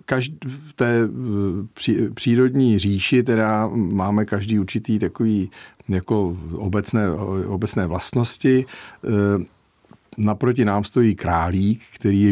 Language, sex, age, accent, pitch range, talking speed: Czech, male, 50-69, native, 95-115 Hz, 95 wpm